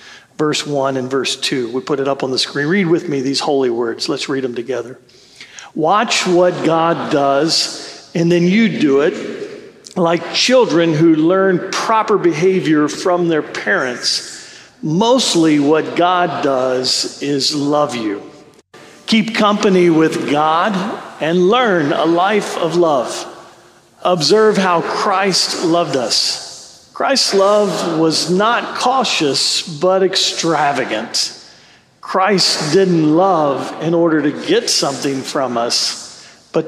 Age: 50-69